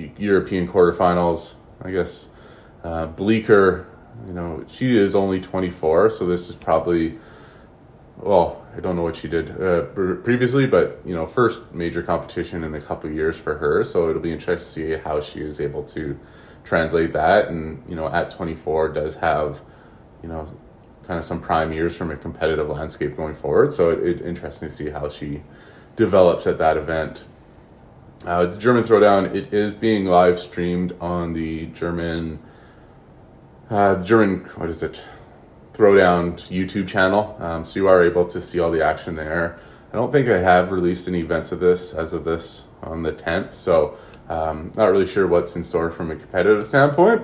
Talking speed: 180 wpm